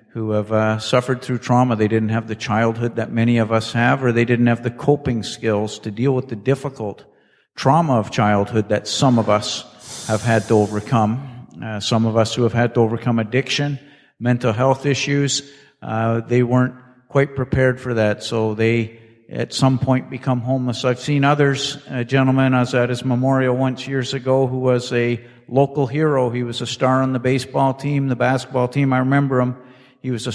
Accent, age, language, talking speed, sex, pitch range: American, 50-69, English, 200 wpm, male, 115-130 Hz